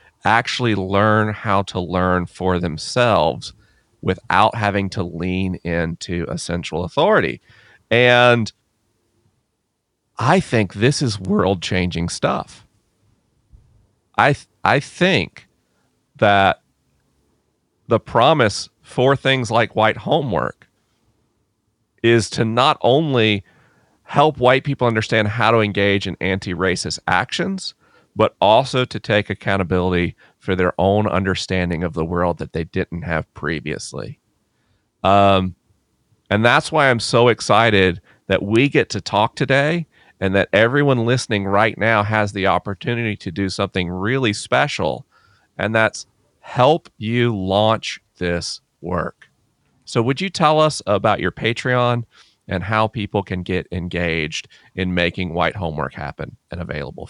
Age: 40-59